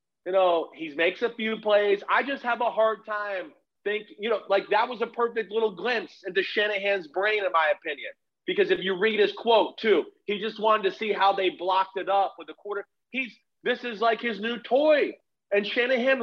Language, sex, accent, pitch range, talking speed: English, male, American, 195-245 Hz, 215 wpm